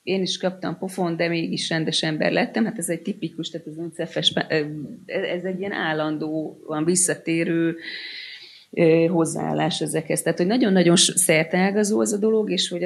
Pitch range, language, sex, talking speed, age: 160-185 Hz, Hungarian, female, 150 wpm, 30-49